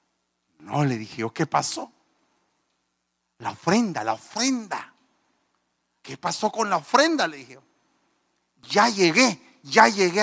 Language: Spanish